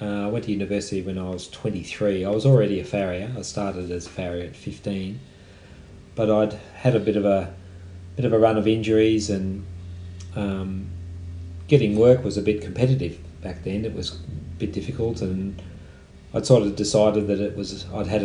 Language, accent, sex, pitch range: English, Australian, male, 95-110 Hz